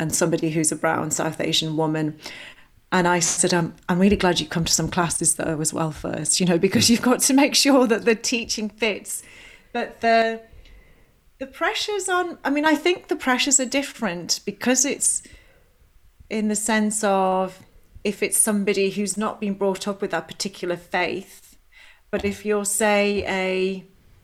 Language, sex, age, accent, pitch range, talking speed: English, female, 30-49, British, 185-230 Hz, 180 wpm